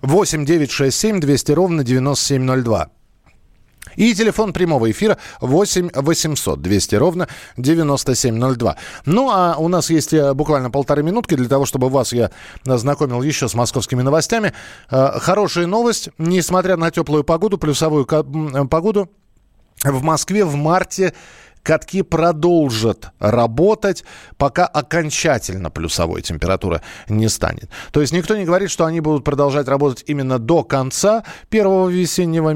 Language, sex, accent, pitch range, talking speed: Russian, male, native, 130-170 Hz, 135 wpm